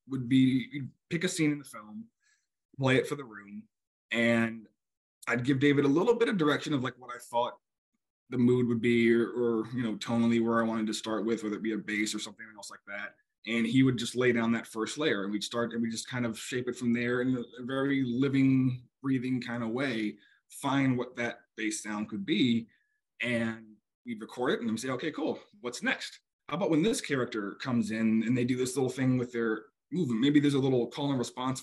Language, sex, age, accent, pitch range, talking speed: English, male, 20-39, American, 115-135 Hz, 235 wpm